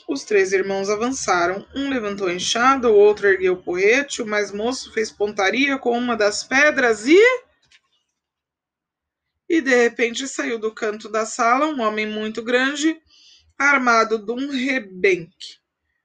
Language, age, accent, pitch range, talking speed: Portuguese, 20-39, Brazilian, 210-270 Hz, 145 wpm